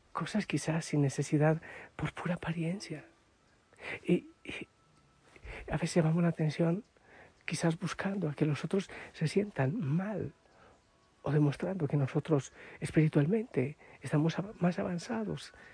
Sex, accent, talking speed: male, Spanish, 120 wpm